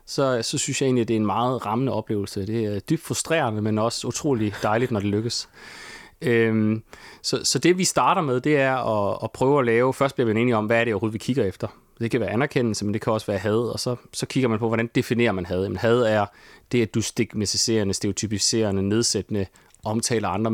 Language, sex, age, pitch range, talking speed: Danish, male, 30-49, 105-130 Hz, 230 wpm